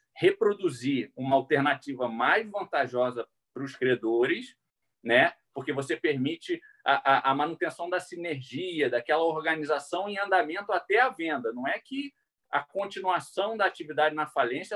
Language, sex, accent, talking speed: Portuguese, male, Brazilian, 140 wpm